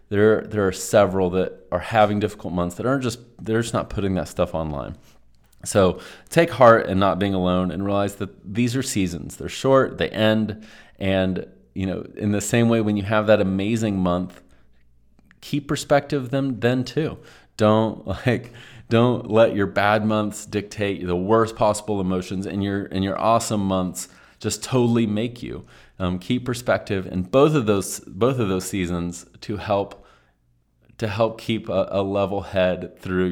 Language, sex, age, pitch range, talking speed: English, male, 30-49, 95-120 Hz, 175 wpm